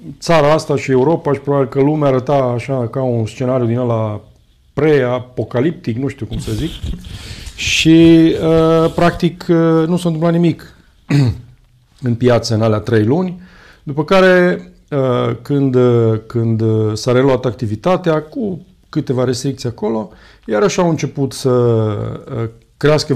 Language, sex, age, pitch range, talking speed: Romanian, male, 40-59, 115-150 Hz, 130 wpm